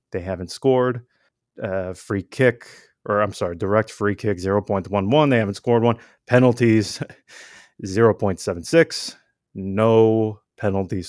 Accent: American